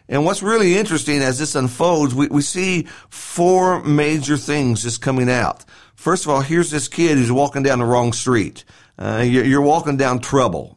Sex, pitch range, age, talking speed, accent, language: male, 125-155 Hz, 50-69, 190 wpm, American, English